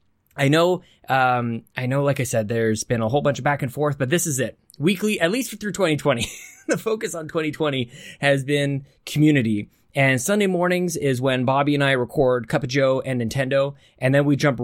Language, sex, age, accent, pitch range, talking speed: English, male, 20-39, American, 125-150 Hz, 210 wpm